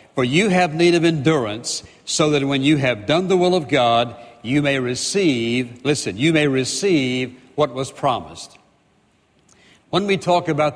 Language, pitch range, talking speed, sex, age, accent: English, 135-160 Hz, 165 wpm, male, 60-79, American